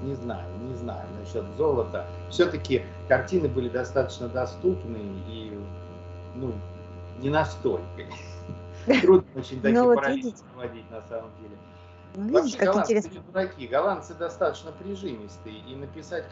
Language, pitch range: Russian, 90-135 Hz